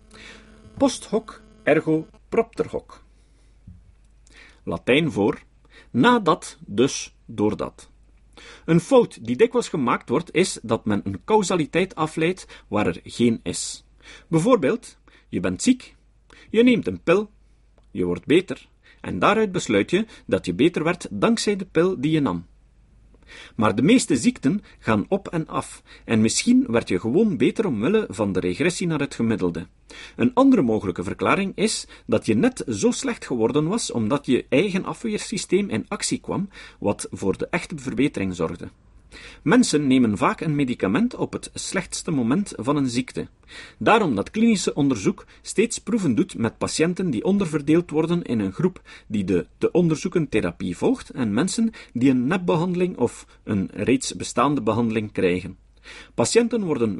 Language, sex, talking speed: Dutch, male, 150 wpm